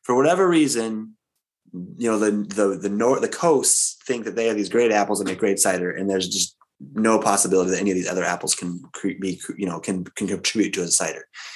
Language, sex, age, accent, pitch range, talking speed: English, male, 20-39, American, 95-115 Hz, 225 wpm